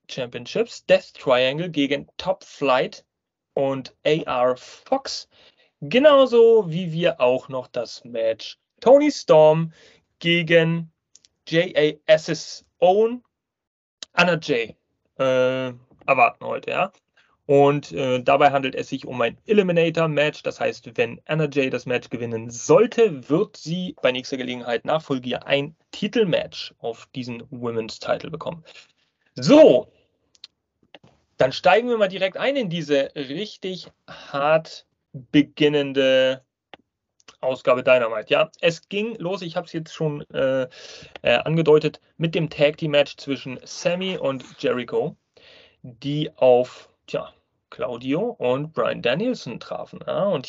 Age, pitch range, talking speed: 30-49, 130-170 Hz, 120 wpm